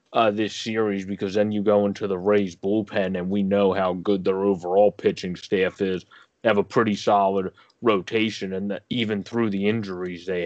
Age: 20-39